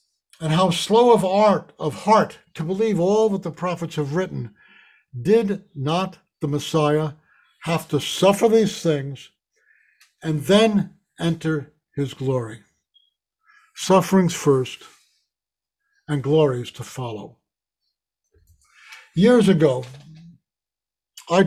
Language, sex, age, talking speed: English, male, 60-79, 105 wpm